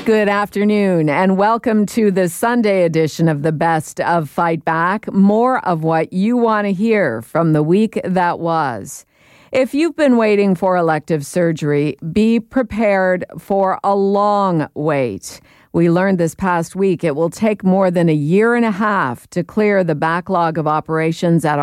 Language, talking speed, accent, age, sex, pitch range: English, 170 wpm, American, 50-69, female, 160-195 Hz